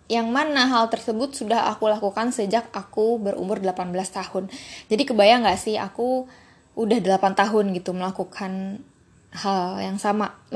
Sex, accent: female, native